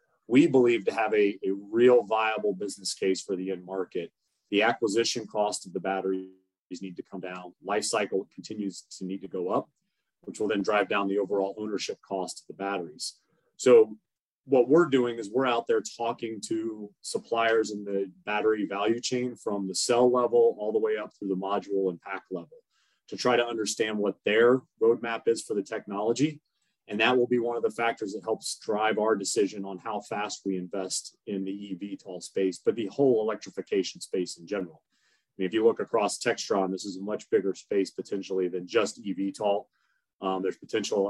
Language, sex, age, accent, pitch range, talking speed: English, male, 30-49, American, 95-120 Hz, 195 wpm